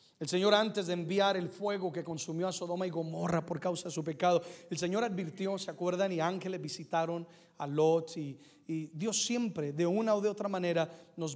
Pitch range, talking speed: 160-185 Hz, 205 wpm